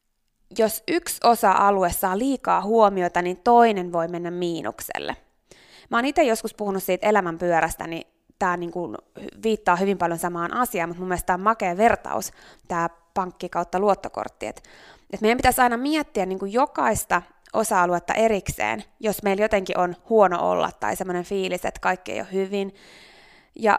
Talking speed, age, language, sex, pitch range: 155 wpm, 20-39, Finnish, female, 180-220 Hz